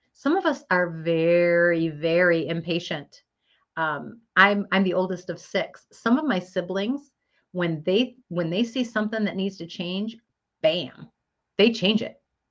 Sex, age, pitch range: female, 40-59, 175-250 Hz